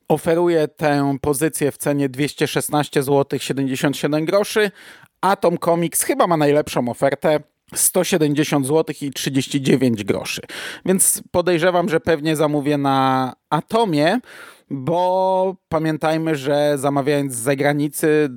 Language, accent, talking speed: Polish, native, 95 wpm